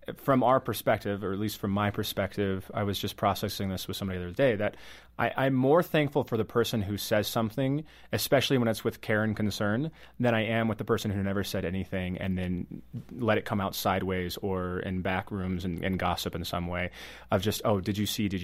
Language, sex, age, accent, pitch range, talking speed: English, male, 30-49, American, 95-120 Hz, 230 wpm